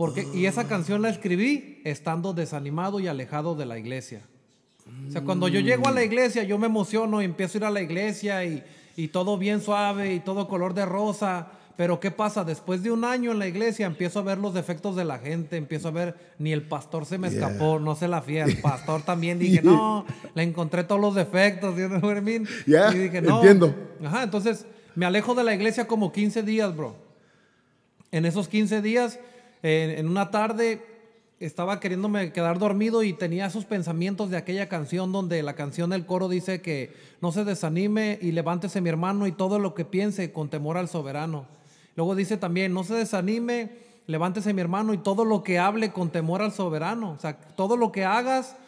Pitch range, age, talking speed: 170-210 Hz, 30-49, 205 wpm